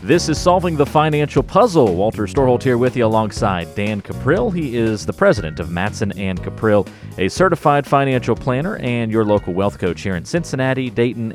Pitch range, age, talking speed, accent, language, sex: 95-130 Hz, 40-59, 185 wpm, American, English, male